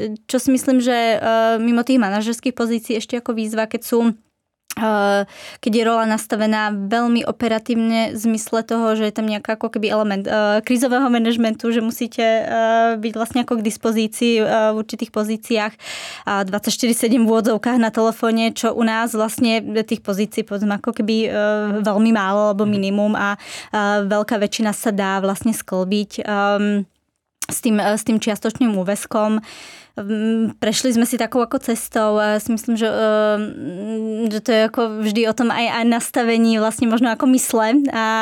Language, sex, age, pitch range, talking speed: Czech, female, 20-39, 215-230 Hz, 145 wpm